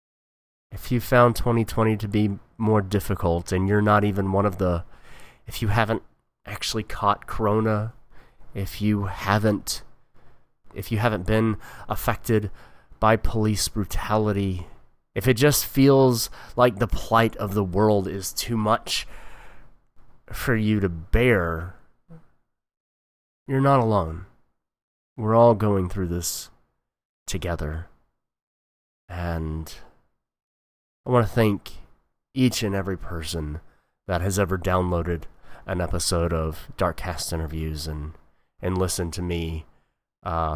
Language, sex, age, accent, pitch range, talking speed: English, male, 20-39, American, 80-110 Hz, 125 wpm